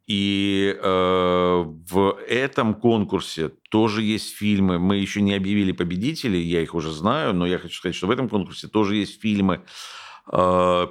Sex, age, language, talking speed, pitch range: male, 50-69, Russian, 160 wpm, 85-100 Hz